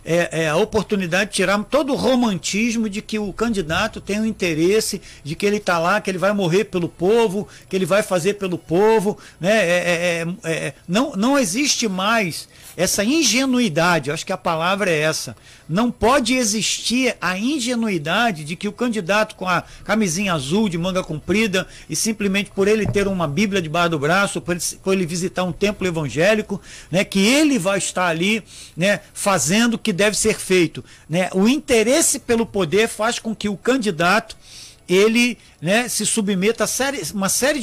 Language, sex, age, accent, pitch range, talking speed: Portuguese, male, 60-79, Brazilian, 180-230 Hz, 170 wpm